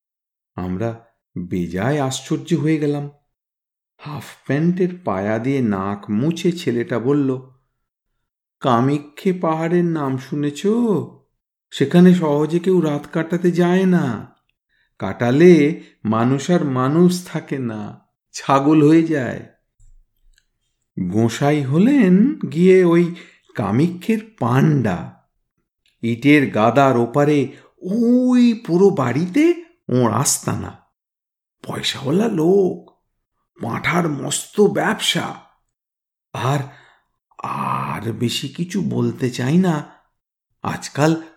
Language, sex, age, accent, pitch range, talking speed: Bengali, male, 50-69, native, 110-175 Hz, 85 wpm